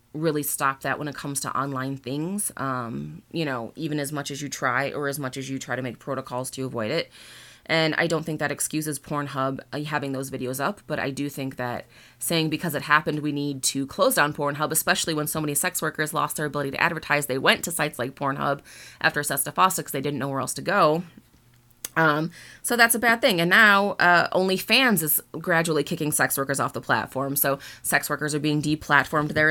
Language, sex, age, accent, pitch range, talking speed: English, female, 20-39, American, 140-175 Hz, 220 wpm